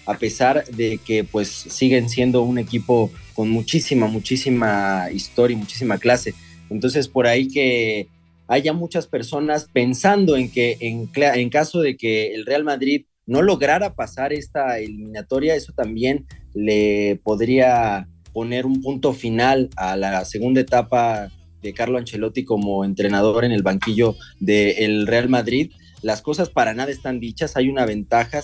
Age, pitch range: 30-49, 110-140 Hz